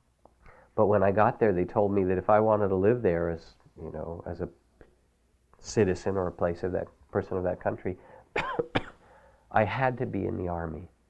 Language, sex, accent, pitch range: English, male, American, 85-100 Hz